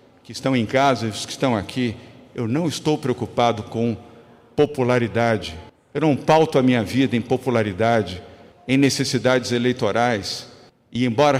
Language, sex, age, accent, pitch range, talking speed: Portuguese, male, 50-69, Brazilian, 115-145 Hz, 135 wpm